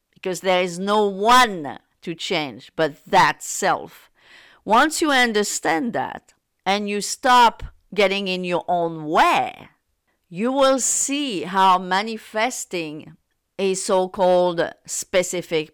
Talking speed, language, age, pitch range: 115 wpm, English, 50-69, 170-215 Hz